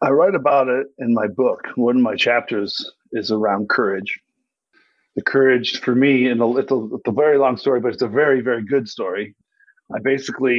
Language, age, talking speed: English, 40-59, 185 wpm